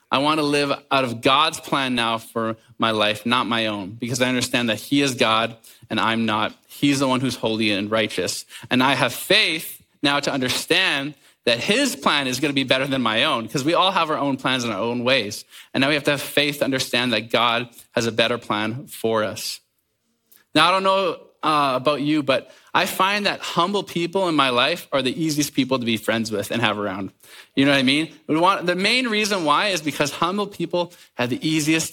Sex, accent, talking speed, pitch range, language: male, American, 230 wpm, 120-155 Hz, English